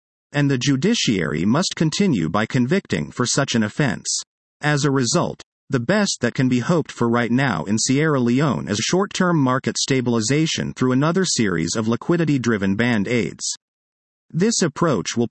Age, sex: 40-59, male